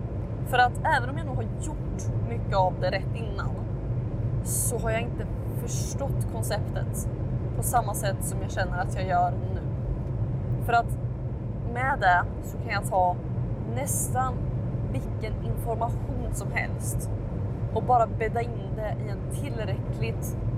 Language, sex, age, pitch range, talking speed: Swedish, female, 20-39, 110-125 Hz, 145 wpm